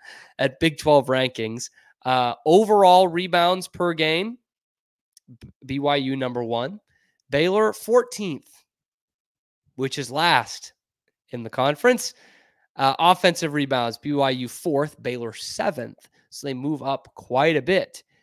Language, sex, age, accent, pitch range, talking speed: English, male, 20-39, American, 125-165 Hz, 110 wpm